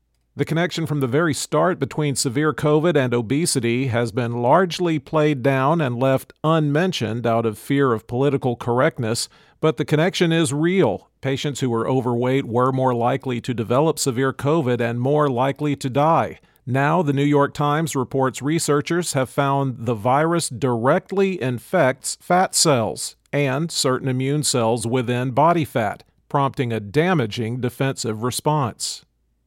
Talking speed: 150 wpm